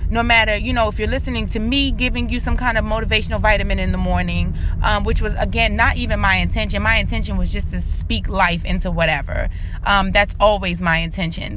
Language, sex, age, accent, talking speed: English, female, 30-49, American, 215 wpm